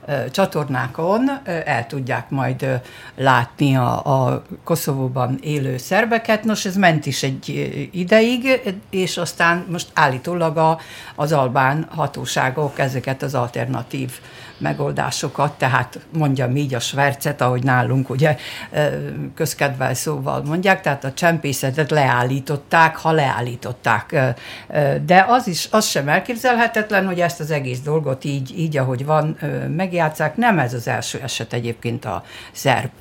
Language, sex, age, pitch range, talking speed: Hungarian, female, 60-79, 130-165 Hz, 125 wpm